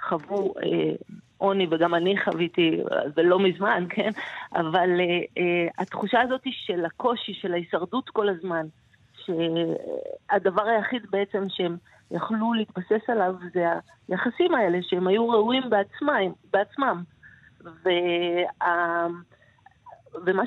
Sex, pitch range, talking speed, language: female, 165-205 Hz, 110 wpm, Hebrew